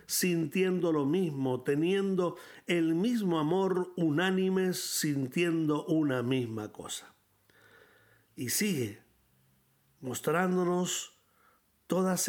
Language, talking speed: Spanish, 80 wpm